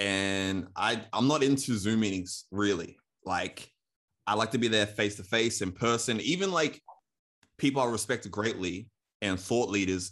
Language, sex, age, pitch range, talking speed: English, male, 20-39, 100-130 Hz, 165 wpm